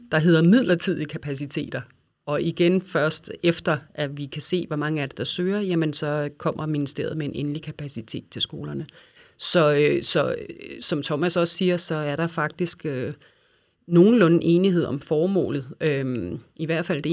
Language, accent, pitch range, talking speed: Danish, native, 150-175 Hz, 170 wpm